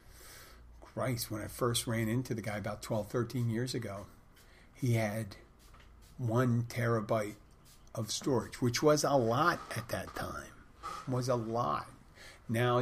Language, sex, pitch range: English, male, 100-120 Hz